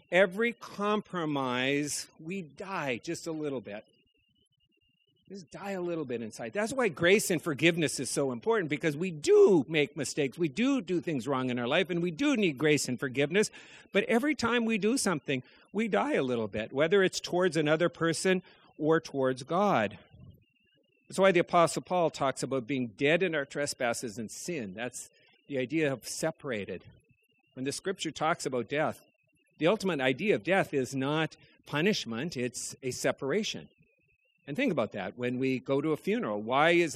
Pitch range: 130-190 Hz